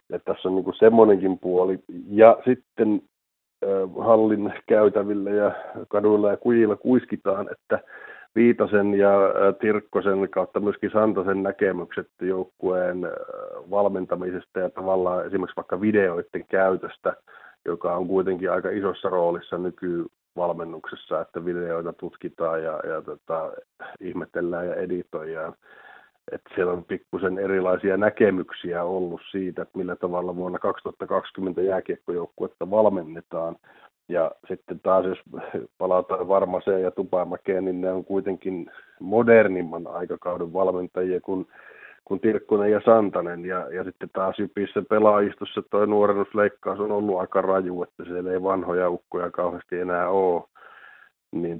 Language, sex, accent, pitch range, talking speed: Finnish, male, native, 90-105 Hz, 120 wpm